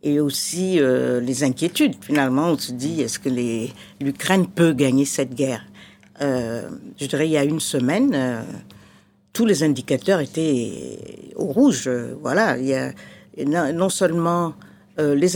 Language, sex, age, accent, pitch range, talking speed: French, female, 50-69, French, 130-180 Hz, 160 wpm